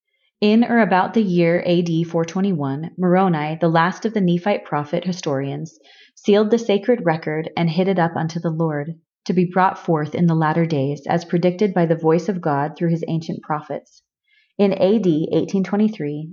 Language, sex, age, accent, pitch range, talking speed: English, female, 30-49, American, 165-195 Hz, 175 wpm